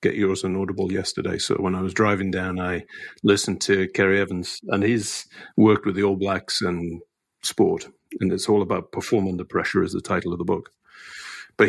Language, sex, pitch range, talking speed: English, male, 95-110 Hz, 200 wpm